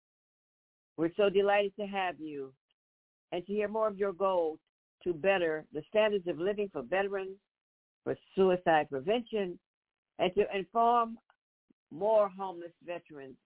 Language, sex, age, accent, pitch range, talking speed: English, female, 60-79, American, 150-185 Hz, 135 wpm